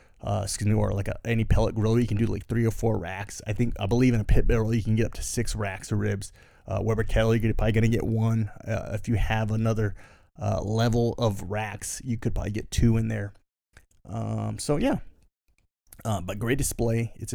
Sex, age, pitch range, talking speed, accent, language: male, 20-39, 105-120 Hz, 230 wpm, American, English